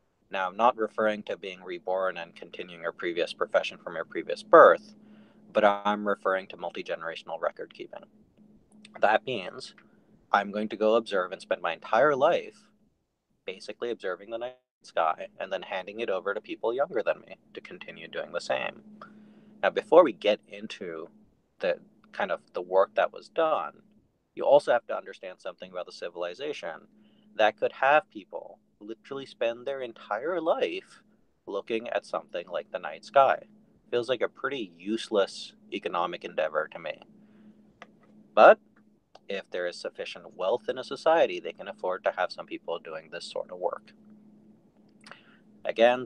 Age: 30-49